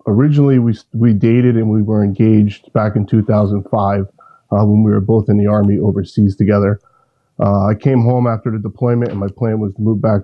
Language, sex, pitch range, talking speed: English, male, 105-120 Hz, 205 wpm